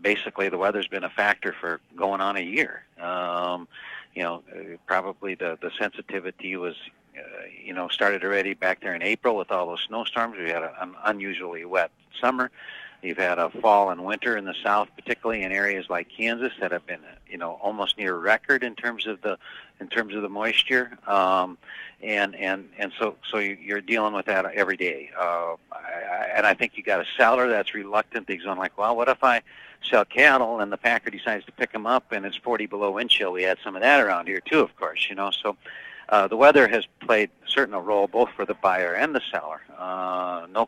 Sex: male